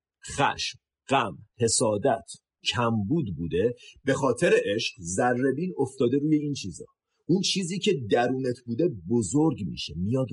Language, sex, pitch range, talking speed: Persian, male, 95-130 Hz, 130 wpm